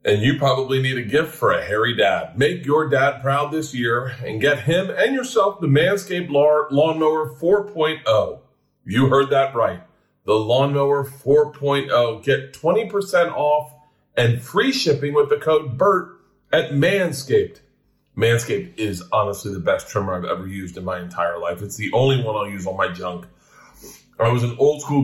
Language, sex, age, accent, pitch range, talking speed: English, male, 40-59, American, 115-145 Hz, 170 wpm